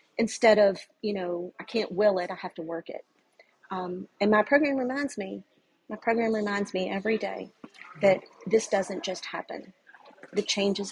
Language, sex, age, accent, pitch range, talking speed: English, female, 40-59, American, 185-215 Hz, 175 wpm